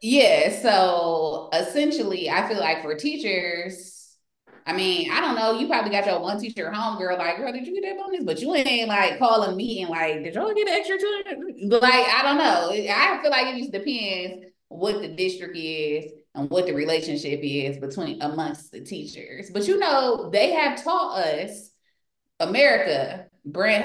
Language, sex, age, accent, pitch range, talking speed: English, female, 20-39, American, 185-285 Hz, 190 wpm